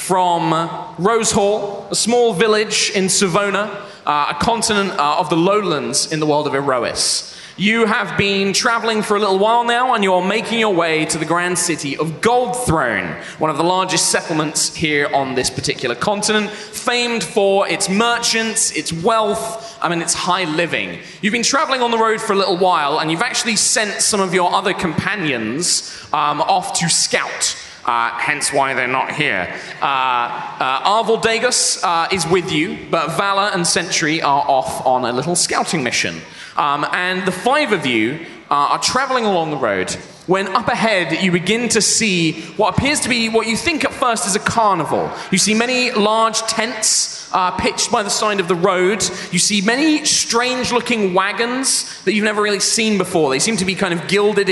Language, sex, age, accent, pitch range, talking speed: English, male, 20-39, British, 175-225 Hz, 190 wpm